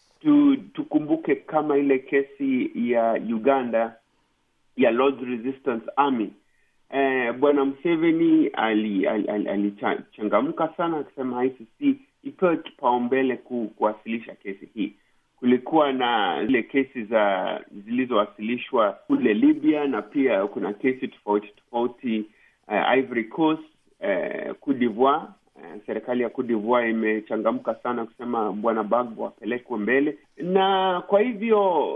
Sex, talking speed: male, 115 wpm